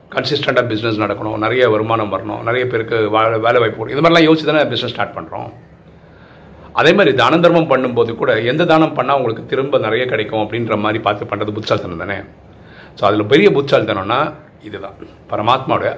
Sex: male